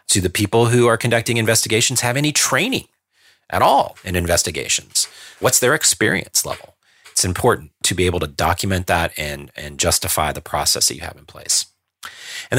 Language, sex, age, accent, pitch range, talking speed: English, male, 30-49, American, 90-105 Hz, 175 wpm